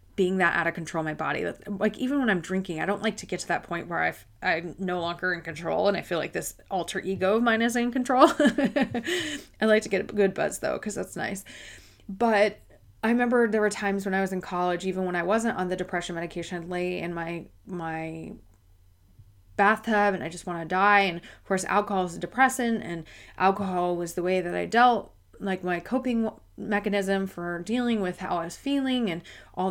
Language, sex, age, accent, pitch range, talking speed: English, female, 20-39, American, 175-220 Hz, 220 wpm